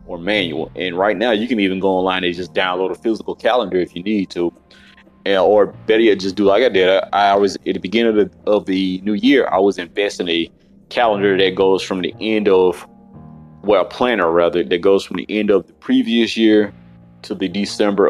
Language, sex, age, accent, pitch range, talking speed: English, male, 30-49, American, 90-105 Hz, 220 wpm